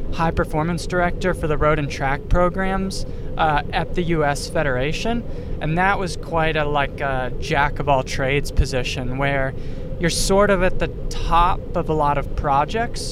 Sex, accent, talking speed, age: male, American, 175 wpm, 20-39